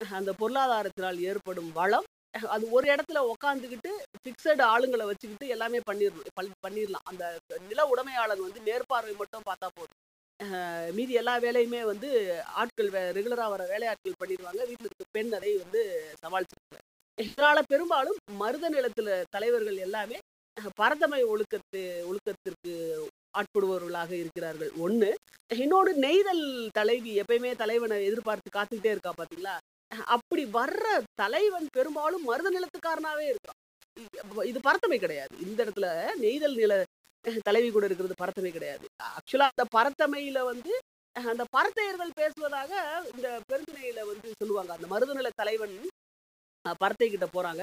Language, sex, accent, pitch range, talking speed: Tamil, female, native, 205-325 Hz, 115 wpm